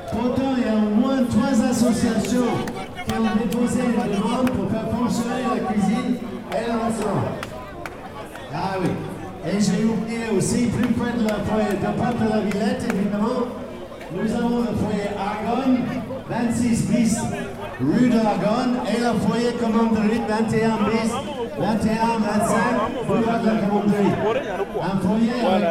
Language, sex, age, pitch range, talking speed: French, male, 50-69, 205-235 Hz, 140 wpm